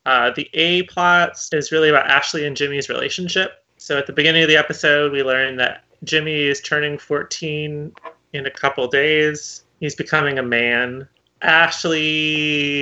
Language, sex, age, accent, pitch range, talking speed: English, male, 30-49, American, 130-165 Hz, 160 wpm